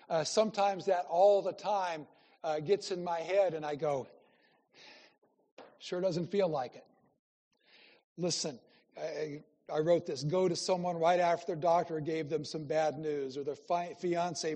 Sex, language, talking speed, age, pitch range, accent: male, English, 160 wpm, 60-79, 150-180 Hz, American